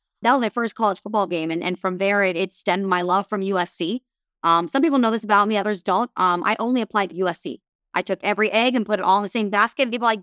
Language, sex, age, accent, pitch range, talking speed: English, female, 20-39, American, 185-220 Hz, 285 wpm